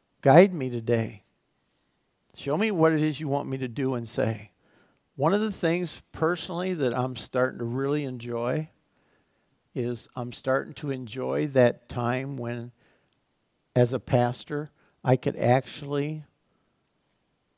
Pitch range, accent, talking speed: 120-145 Hz, American, 135 wpm